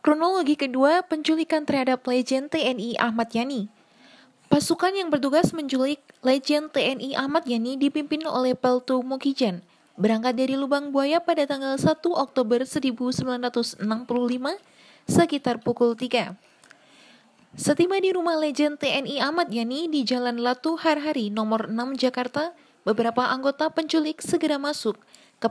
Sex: female